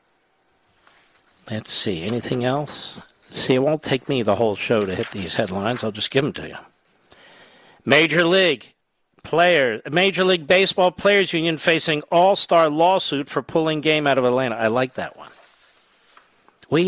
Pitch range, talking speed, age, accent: 130-170 Hz, 155 wpm, 50-69, American